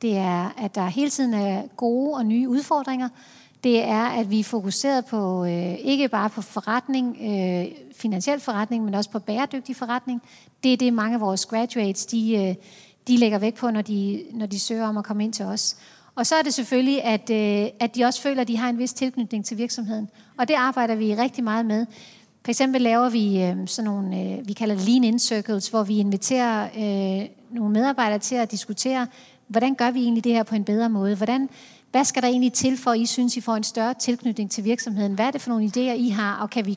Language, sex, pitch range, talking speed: Danish, female, 210-250 Hz, 215 wpm